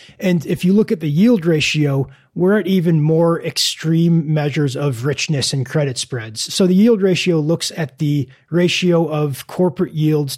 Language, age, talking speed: English, 30-49, 175 wpm